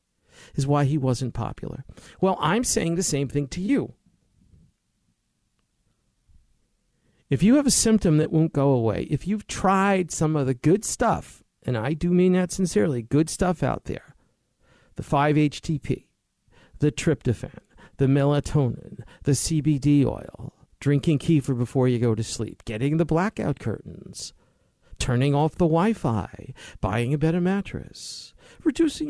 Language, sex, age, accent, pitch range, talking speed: English, male, 50-69, American, 135-190 Hz, 140 wpm